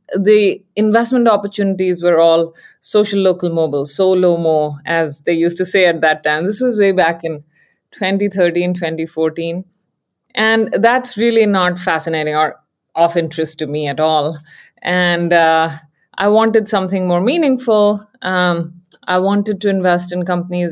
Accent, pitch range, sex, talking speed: Indian, 170-215 Hz, female, 150 wpm